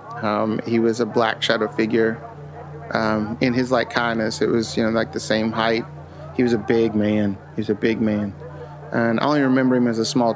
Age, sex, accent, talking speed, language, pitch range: 30-49, male, American, 220 wpm, English, 110-130 Hz